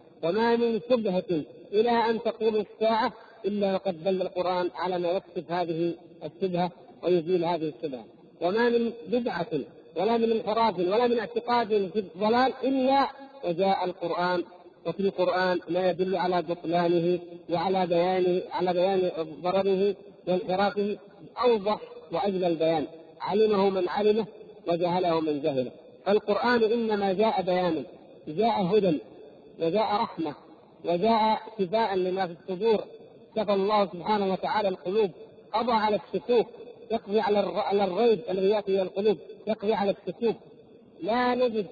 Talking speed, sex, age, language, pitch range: 120 wpm, male, 50-69, Arabic, 180-225 Hz